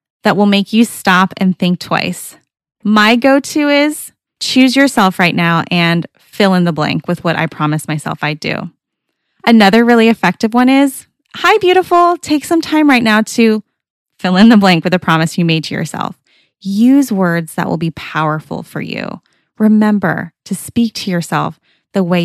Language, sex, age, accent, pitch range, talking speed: English, female, 20-39, American, 170-225 Hz, 180 wpm